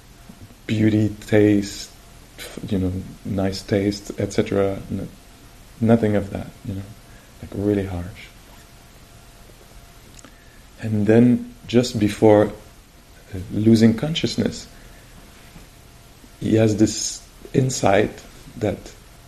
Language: English